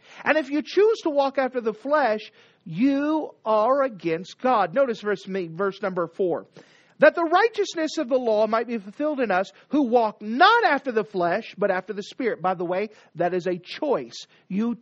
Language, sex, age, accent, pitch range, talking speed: English, male, 50-69, American, 200-290 Hz, 190 wpm